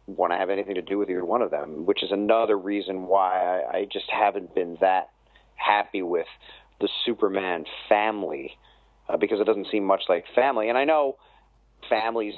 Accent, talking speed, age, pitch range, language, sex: American, 190 wpm, 40-59, 100-120 Hz, English, male